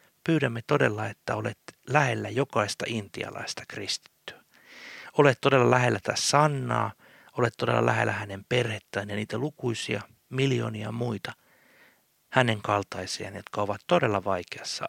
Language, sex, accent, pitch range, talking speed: Finnish, male, native, 105-135 Hz, 115 wpm